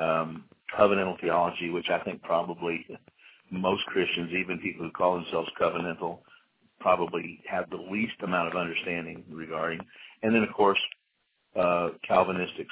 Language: English